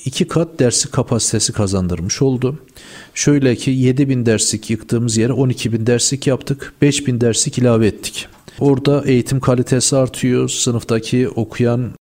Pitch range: 110-130 Hz